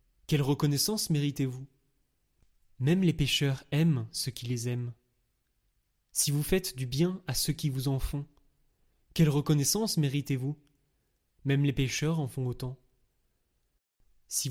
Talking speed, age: 130 wpm, 20-39